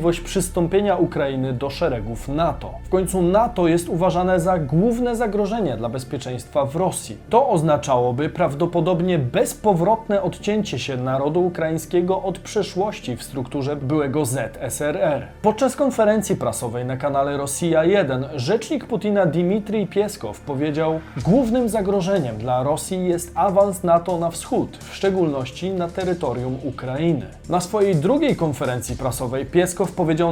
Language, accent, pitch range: Polish, native, 145-195 Hz